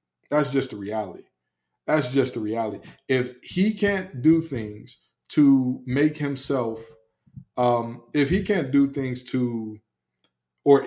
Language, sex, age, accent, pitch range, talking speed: English, male, 20-39, American, 115-135 Hz, 135 wpm